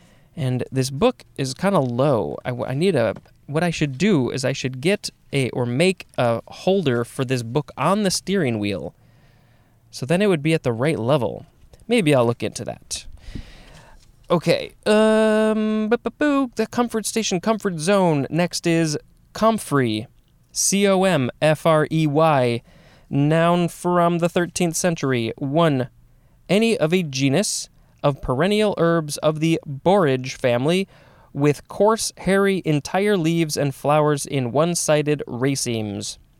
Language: English